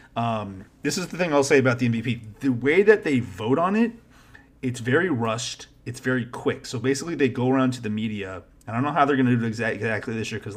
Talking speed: 255 wpm